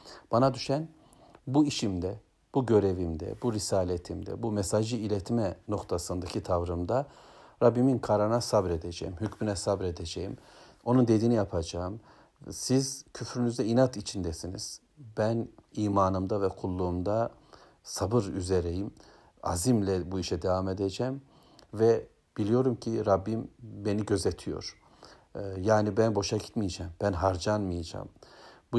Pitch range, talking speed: 95-115 Hz, 100 wpm